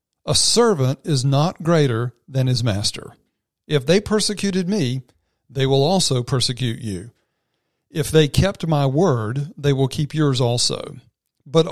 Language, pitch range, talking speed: English, 125-160 Hz, 145 wpm